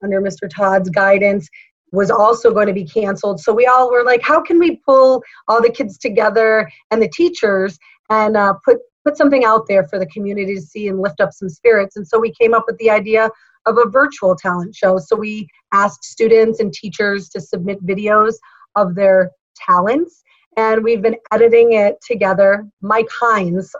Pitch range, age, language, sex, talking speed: 195-225 Hz, 30-49, English, female, 190 wpm